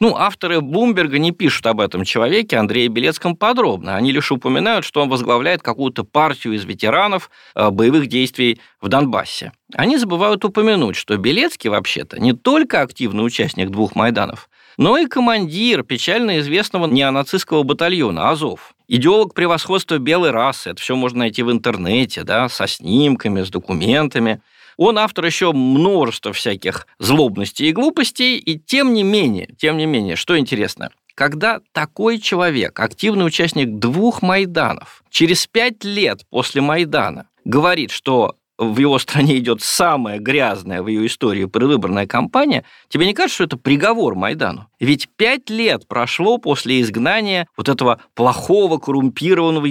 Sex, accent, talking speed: male, native, 145 wpm